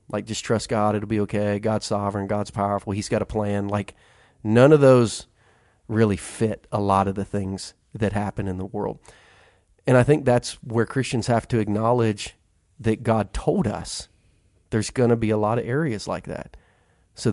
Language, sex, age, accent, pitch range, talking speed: English, male, 30-49, American, 95-110 Hz, 190 wpm